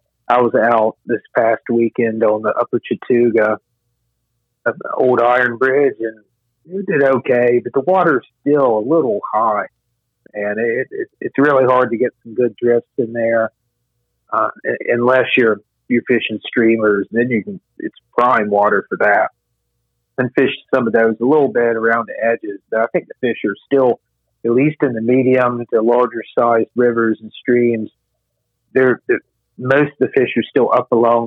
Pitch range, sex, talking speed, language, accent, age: 115-125 Hz, male, 180 wpm, English, American, 50-69